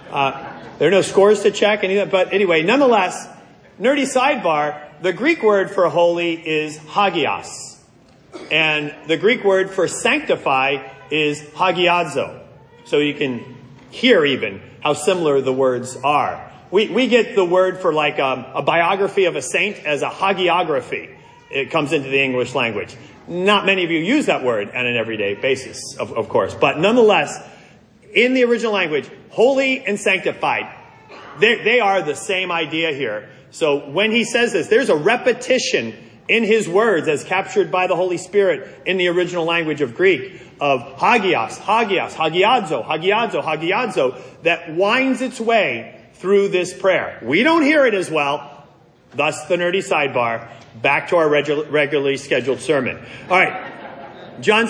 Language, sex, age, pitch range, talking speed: English, male, 40-59, 150-210 Hz, 160 wpm